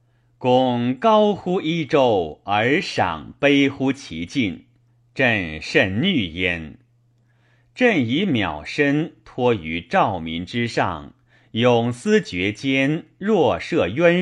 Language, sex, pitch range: Chinese, male, 120-150 Hz